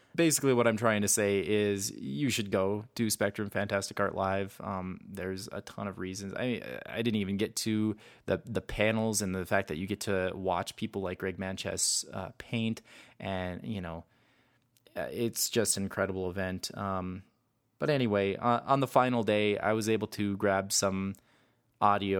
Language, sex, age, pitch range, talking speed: English, male, 20-39, 95-110 Hz, 180 wpm